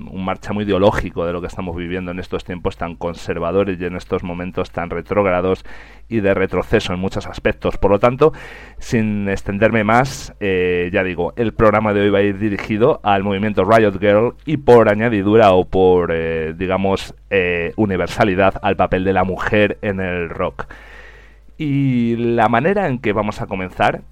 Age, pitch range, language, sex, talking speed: 40-59, 90-115 Hz, Spanish, male, 175 wpm